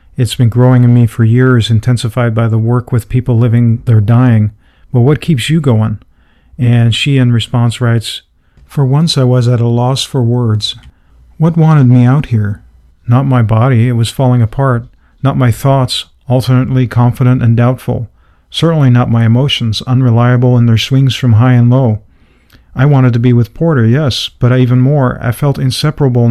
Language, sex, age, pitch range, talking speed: English, male, 50-69, 115-130 Hz, 180 wpm